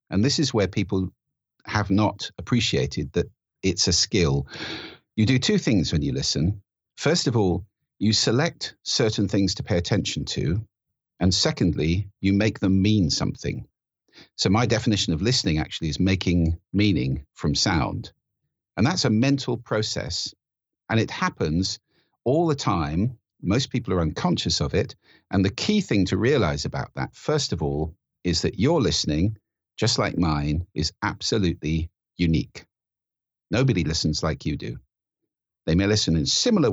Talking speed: 155 wpm